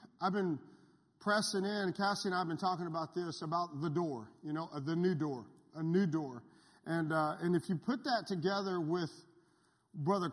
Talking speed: 190 wpm